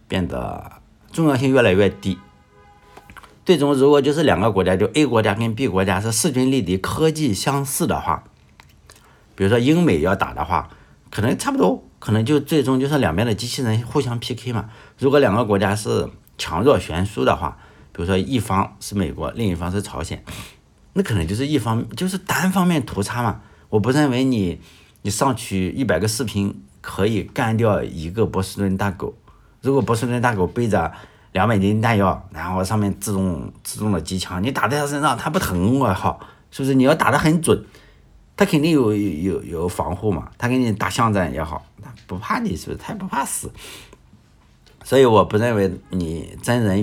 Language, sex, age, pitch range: Chinese, male, 60-79, 95-125 Hz